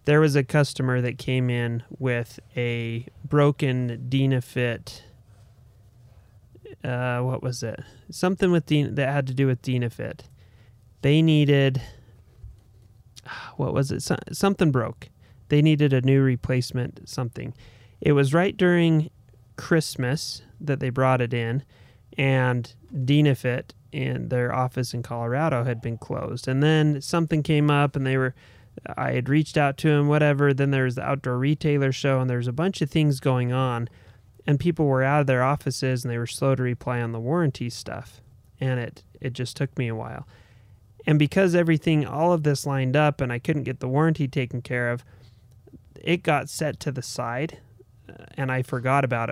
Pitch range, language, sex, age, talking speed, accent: 120-145 Hz, English, male, 30-49, 170 wpm, American